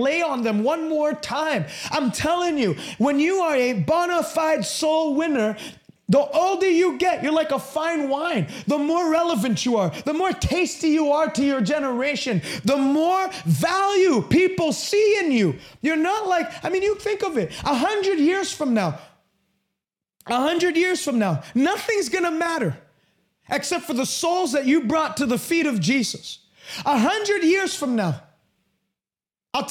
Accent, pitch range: American, 235-335 Hz